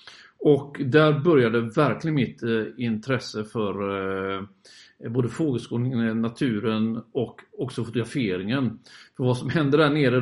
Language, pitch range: Swedish, 120-150 Hz